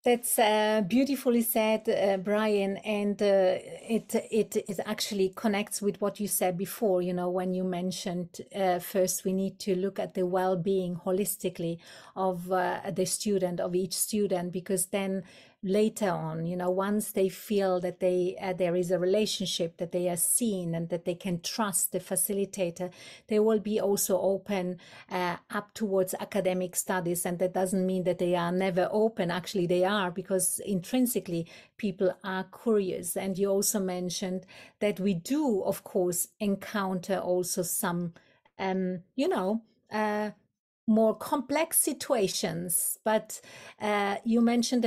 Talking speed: 155 wpm